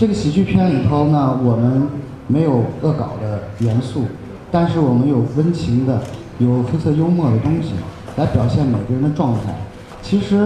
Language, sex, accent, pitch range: Chinese, male, native, 120-155 Hz